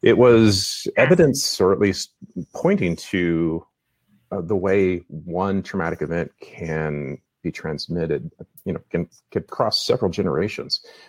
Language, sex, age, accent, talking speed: English, male, 40-59, American, 130 wpm